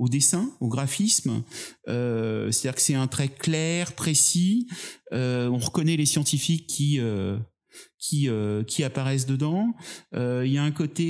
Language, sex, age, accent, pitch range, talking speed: French, male, 30-49, French, 115-155 Hz, 175 wpm